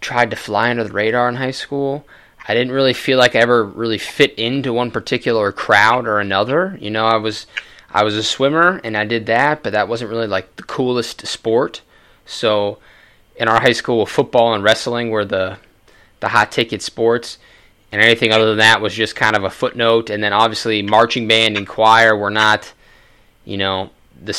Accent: American